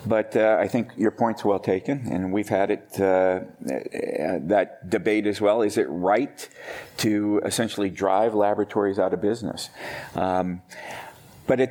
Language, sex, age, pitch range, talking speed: English, male, 40-59, 90-110 Hz, 160 wpm